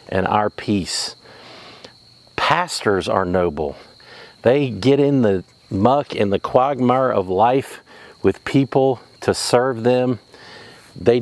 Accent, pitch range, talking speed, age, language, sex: American, 100-130 Hz, 120 wpm, 50-69, English, male